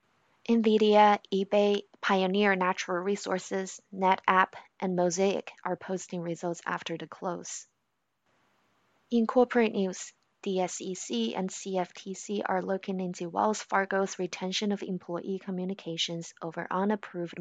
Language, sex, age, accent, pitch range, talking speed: English, female, 20-39, American, 170-195 Hz, 110 wpm